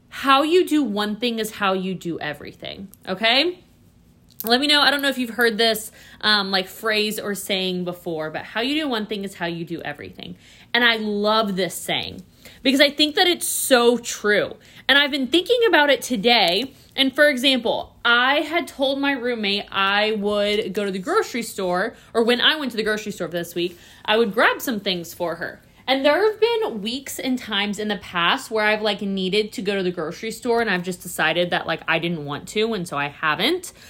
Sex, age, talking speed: female, 20-39, 220 wpm